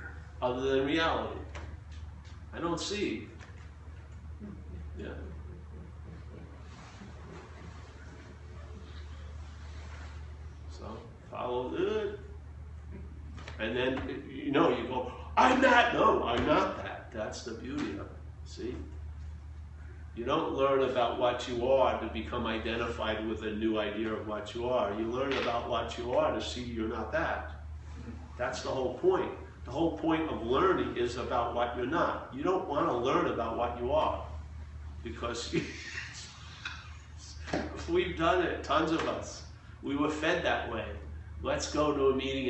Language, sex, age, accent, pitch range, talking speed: English, male, 40-59, American, 80-125 Hz, 135 wpm